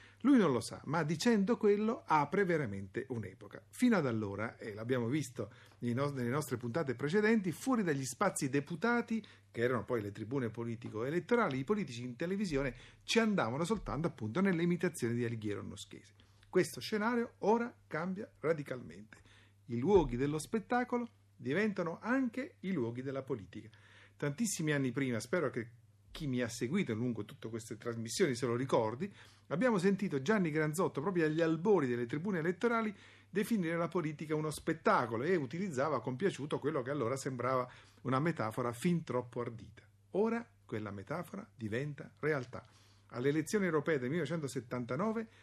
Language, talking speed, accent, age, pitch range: Italian, 150 wpm, native, 50-69, 115-185 Hz